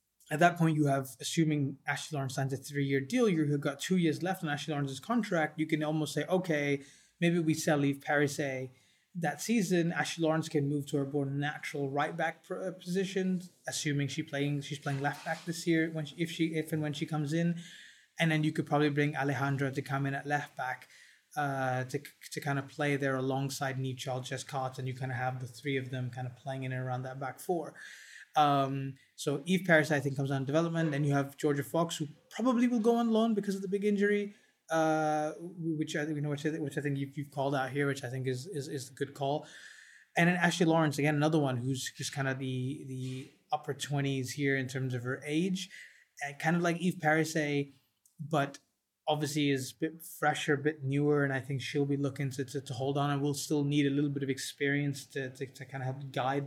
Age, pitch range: 20-39, 135-160 Hz